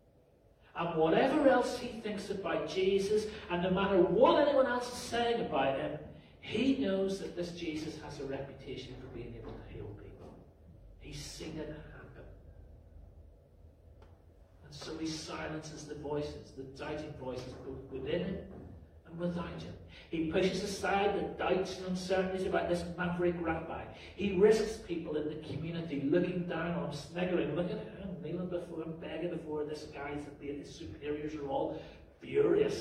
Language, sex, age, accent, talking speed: English, male, 40-59, British, 155 wpm